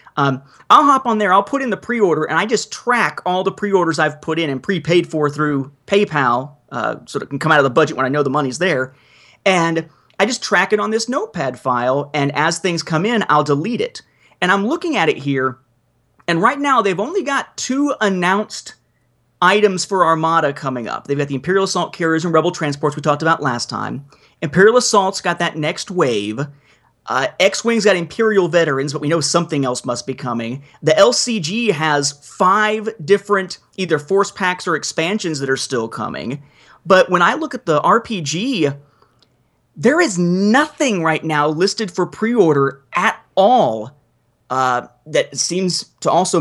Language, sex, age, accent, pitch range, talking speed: English, male, 30-49, American, 145-200 Hz, 185 wpm